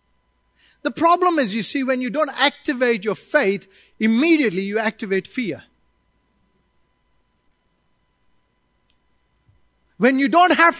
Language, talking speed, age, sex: English, 105 wpm, 50-69, male